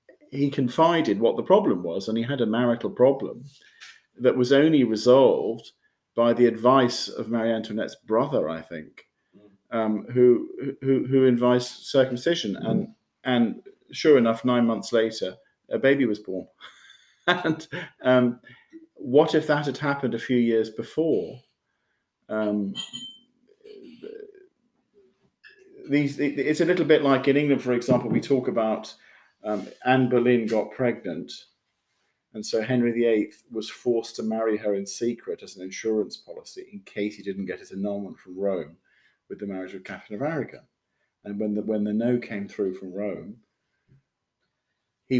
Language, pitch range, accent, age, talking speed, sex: English, 110-140 Hz, British, 40-59, 150 wpm, male